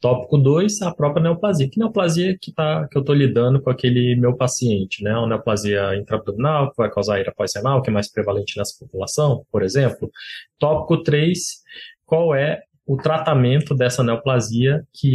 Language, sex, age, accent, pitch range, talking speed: Portuguese, male, 20-39, Brazilian, 110-135 Hz, 175 wpm